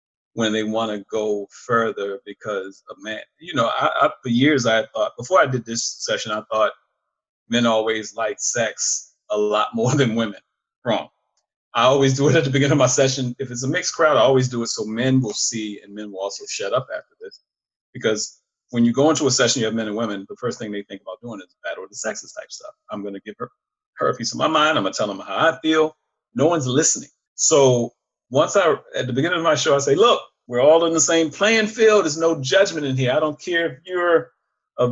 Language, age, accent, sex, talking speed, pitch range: English, 40-59, American, male, 245 wpm, 115-185 Hz